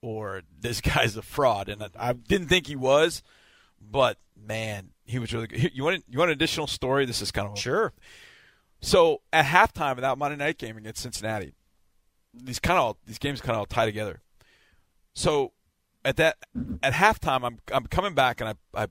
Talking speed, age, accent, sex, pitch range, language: 205 wpm, 40-59, American, male, 100-140 Hz, English